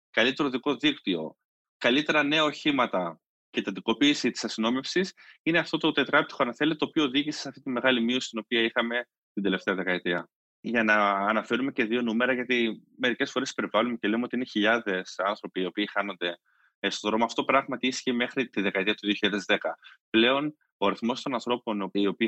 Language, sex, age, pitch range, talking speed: Greek, male, 20-39, 95-135 Hz, 175 wpm